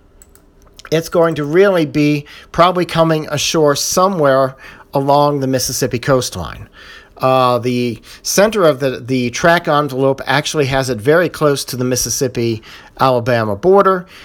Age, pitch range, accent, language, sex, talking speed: 40-59, 125-150 Hz, American, English, male, 125 wpm